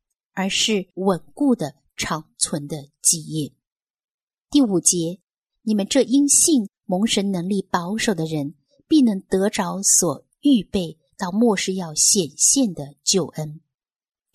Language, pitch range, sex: Chinese, 160-210 Hz, female